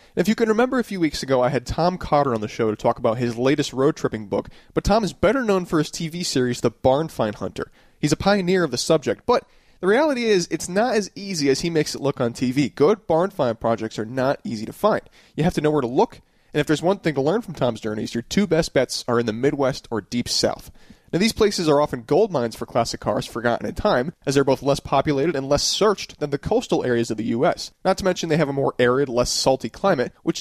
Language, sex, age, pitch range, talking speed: English, male, 30-49, 125-175 Hz, 265 wpm